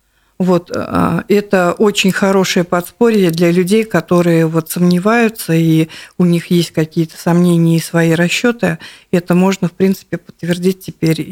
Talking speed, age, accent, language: 135 wpm, 50-69, native, Russian